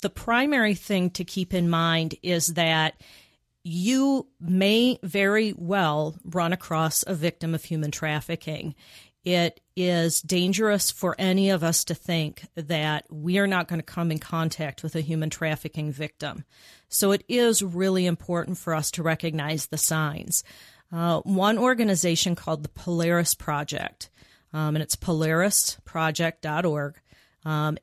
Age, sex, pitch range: 40-59, female, 160-185 Hz